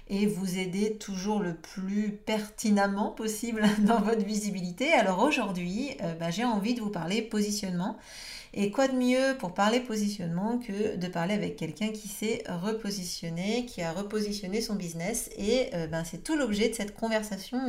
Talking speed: 165 wpm